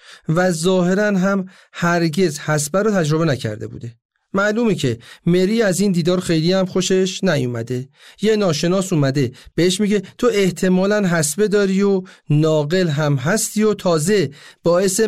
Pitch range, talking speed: 155-200 Hz, 140 wpm